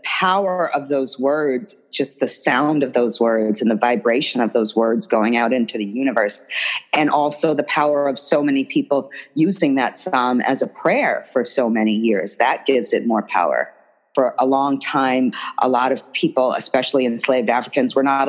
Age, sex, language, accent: 40-59, female, English, American